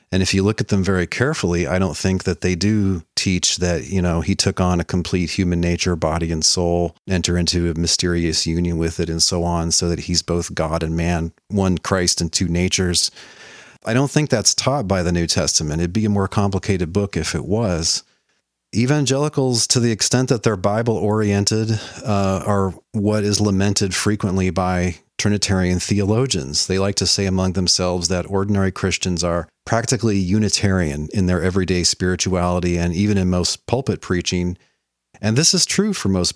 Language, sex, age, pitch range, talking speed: English, male, 40-59, 85-105 Hz, 185 wpm